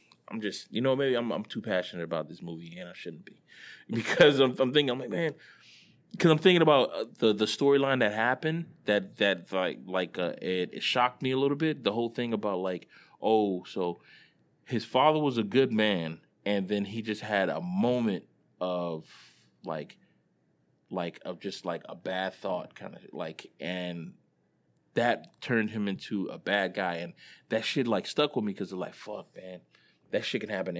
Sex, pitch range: male, 95-125 Hz